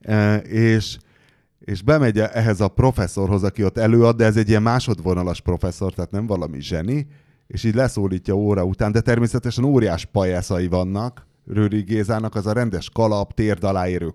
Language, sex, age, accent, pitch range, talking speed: English, male, 30-49, Finnish, 100-135 Hz, 155 wpm